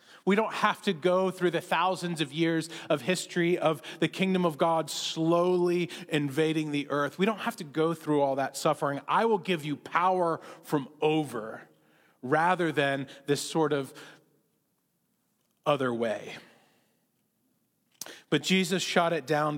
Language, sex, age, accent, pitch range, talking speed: English, male, 30-49, American, 140-175 Hz, 150 wpm